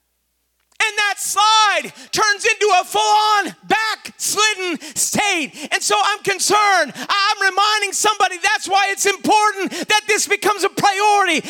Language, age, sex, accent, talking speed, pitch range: English, 40-59, male, American, 135 wpm, 270-415 Hz